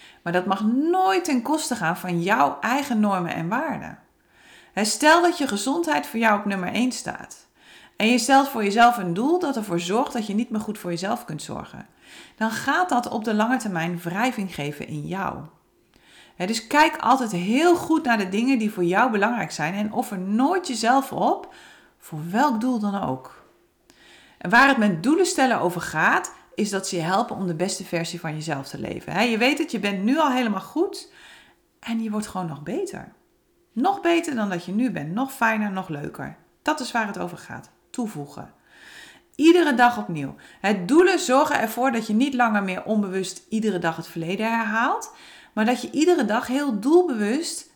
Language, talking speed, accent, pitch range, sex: Dutch, 195 wpm, Dutch, 190-270 Hz, female